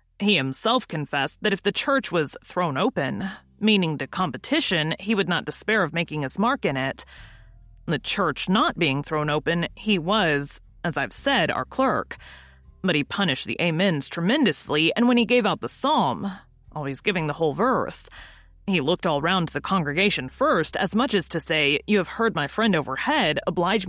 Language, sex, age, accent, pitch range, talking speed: English, female, 30-49, American, 145-205 Hz, 185 wpm